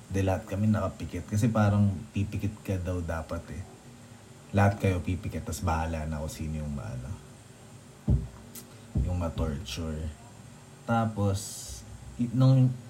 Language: English